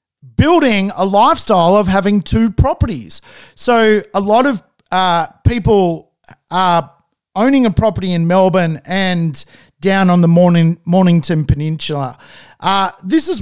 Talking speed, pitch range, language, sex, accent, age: 125 wpm, 170-230 Hz, English, male, Australian, 40-59